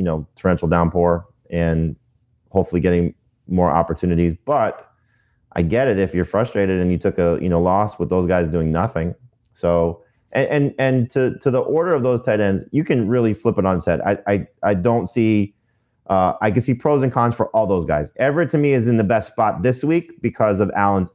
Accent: American